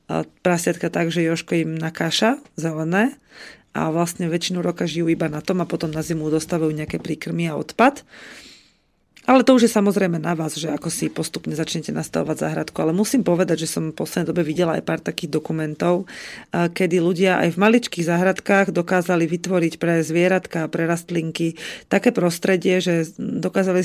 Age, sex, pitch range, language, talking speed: 30-49, female, 165-190 Hz, Slovak, 170 wpm